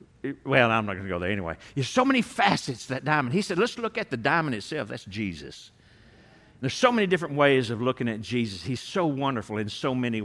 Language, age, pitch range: English, 60-79, 135-185 Hz